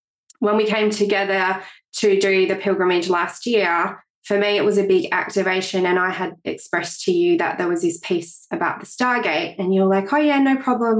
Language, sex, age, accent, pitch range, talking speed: English, female, 20-39, Australian, 180-210 Hz, 205 wpm